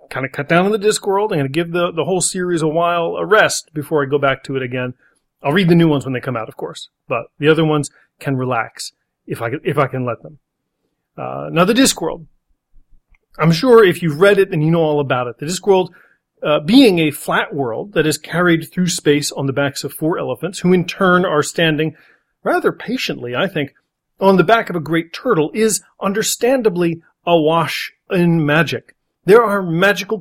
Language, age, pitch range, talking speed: English, 40-59, 145-195 Hz, 215 wpm